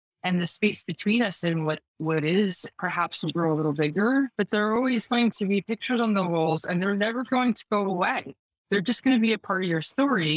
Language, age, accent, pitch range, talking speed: English, 20-39, American, 155-190 Hz, 235 wpm